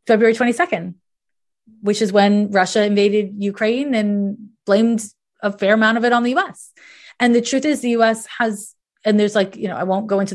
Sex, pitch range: female, 195-230 Hz